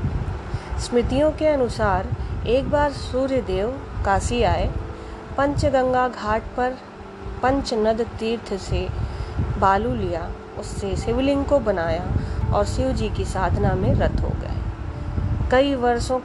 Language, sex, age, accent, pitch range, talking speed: Hindi, female, 30-49, native, 165-250 Hz, 115 wpm